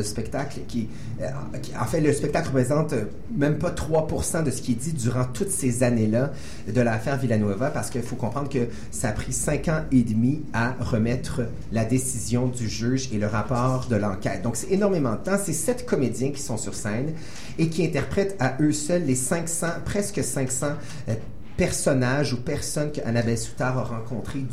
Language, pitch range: French, 115-145 Hz